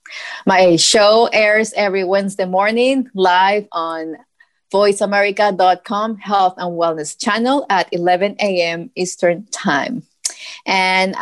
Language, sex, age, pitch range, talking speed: English, female, 20-39, 175-205 Hz, 100 wpm